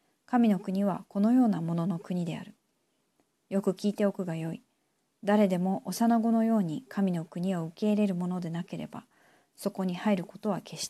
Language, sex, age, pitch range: Japanese, female, 40-59, 175-220 Hz